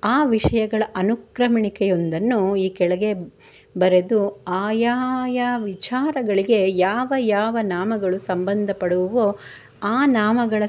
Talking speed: 85 wpm